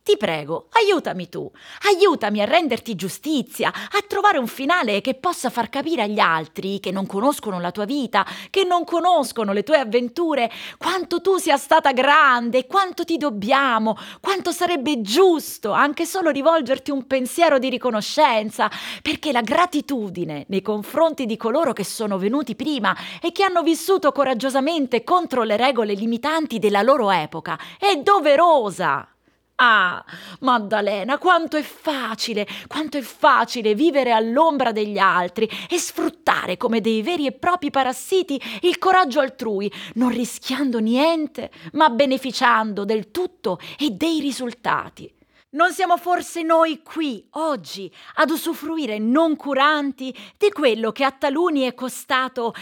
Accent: native